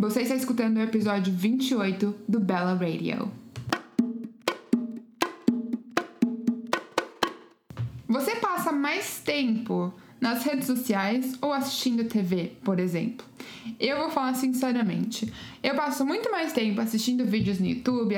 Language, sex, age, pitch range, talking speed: Portuguese, female, 20-39, 215-255 Hz, 110 wpm